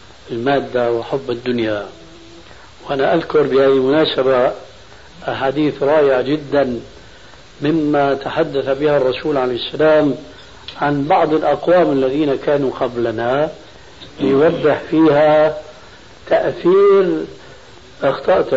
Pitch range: 130-155 Hz